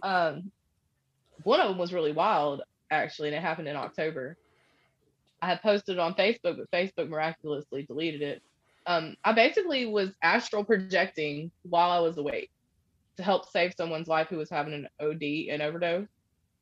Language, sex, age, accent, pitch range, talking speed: English, female, 20-39, American, 155-190 Hz, 165 wpm